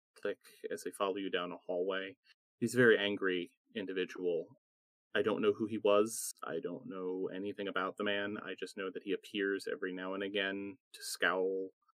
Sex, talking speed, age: male, 185 wpm, 30-49